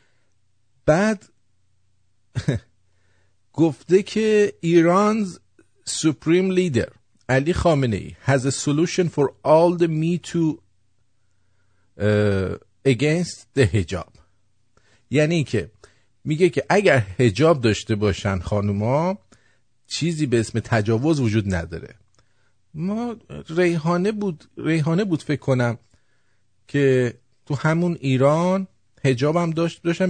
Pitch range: 100-160 Hz